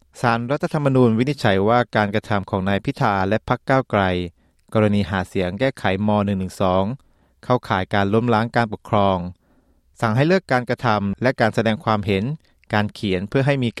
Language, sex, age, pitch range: Thai, male, 20-39, 100-130 Hz